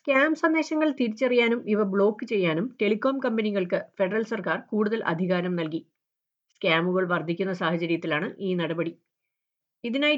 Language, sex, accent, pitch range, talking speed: Malayalam, female, native, 175-235 Hz, 110 wpm